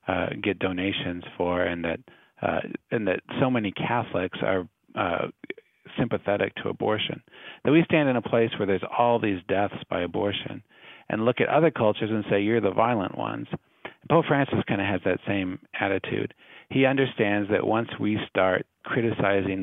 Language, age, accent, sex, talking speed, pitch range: English, 40-59, American, male, 170 wpm, 95-120 Hz